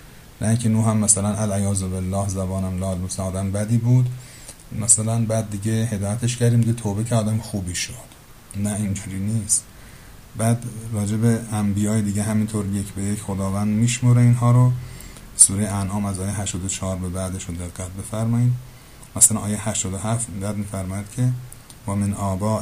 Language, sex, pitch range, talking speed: Persian, male, 100-120 Hz, 155 wpm